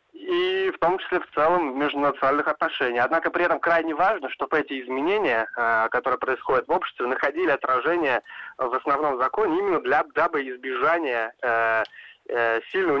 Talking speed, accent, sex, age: 140 wpm, native, male, 20-39